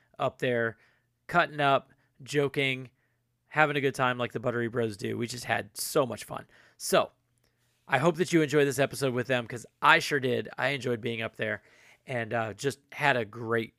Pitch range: 120-150 Hz